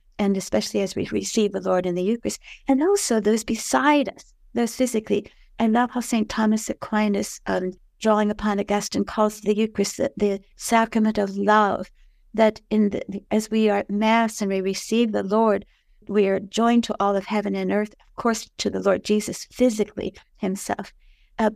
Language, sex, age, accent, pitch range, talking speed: English, female, 60-79, American, 200-225 Hz, 185 wpm